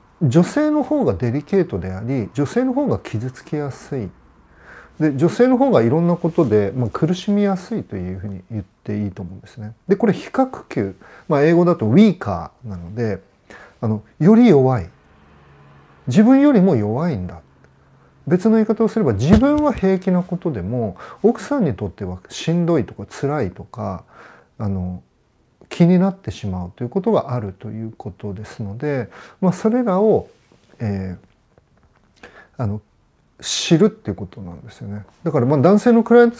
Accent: native